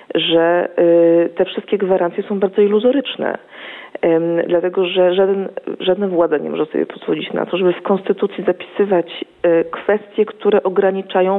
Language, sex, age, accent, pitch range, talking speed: Polish, female, 40-59, native, 175-225 Hz, 130 wpm